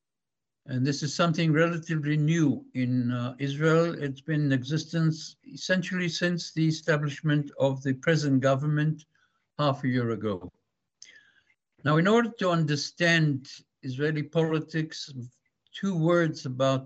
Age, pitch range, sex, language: 60-79, 135-160 Hz, male, Chinese